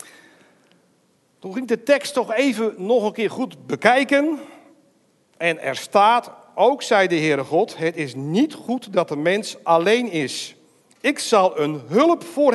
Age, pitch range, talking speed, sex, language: 60-79, 180-265 Hz, 160 wpm, male, Dutch